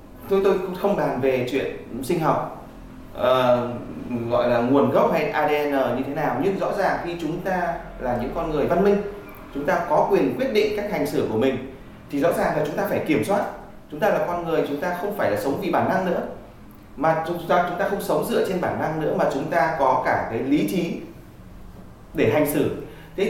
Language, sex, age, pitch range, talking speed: Vietnamese, male, 20-39, 145-200 Hz, 230 wpm